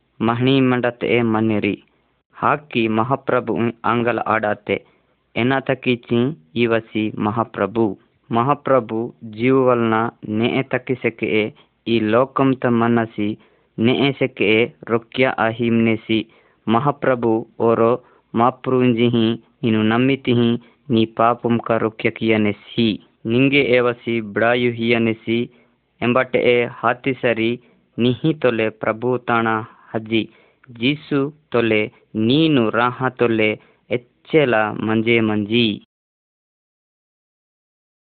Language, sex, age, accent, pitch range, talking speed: Hindi, female, 20-39, native, 115-125 Hz, 60 wpm